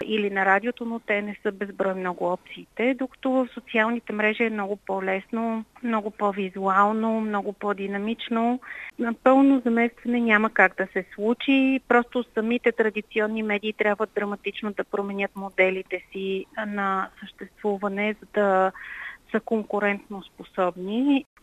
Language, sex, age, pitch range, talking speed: Bulgarian, female, 30-49, 195-225 Hz, 130 wpm